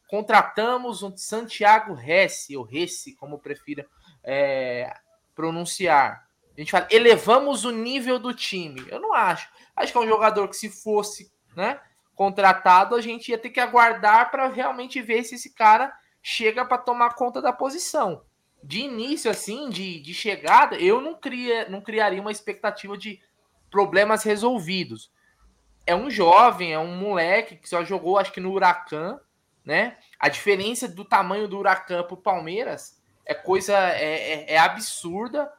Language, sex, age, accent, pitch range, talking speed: Portuguese, male, 20-39, Brazilian, 180-245 Hz, 160 wpm